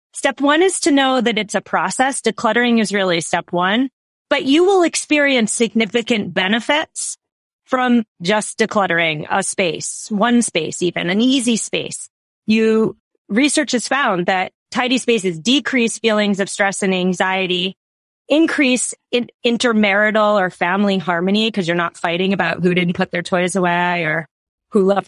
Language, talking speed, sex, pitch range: English, 155 wpm, female, 180-235 Hz